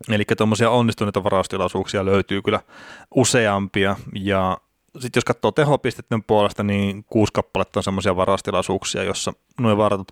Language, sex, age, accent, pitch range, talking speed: Finnish, male, 30-49, native, 95-115 Hz, 125 wpm